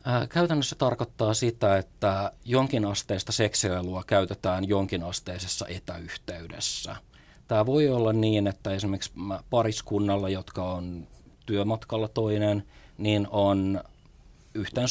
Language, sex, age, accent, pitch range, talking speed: Finnish, male, 30-49, native, 90-105 Hz, 100 wpm